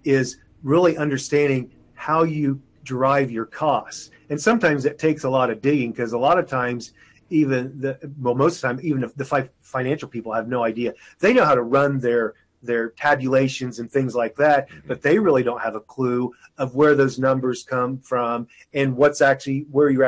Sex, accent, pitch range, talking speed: male, American, 120-145 Hz, 200 wpm